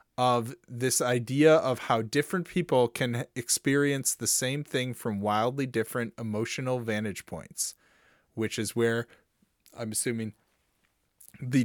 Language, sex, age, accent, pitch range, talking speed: English, male, 20-39, American, 120-140 Hz, 125 wpm